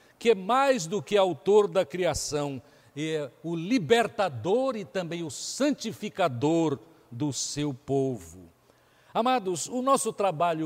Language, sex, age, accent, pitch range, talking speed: Portuguese, male, 60-79, Brazilian, 150-225 Hz, 125 wpm